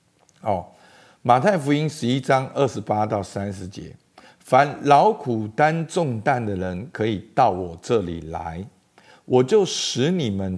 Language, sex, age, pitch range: Chinese, male, 50-69, 105-170 Hz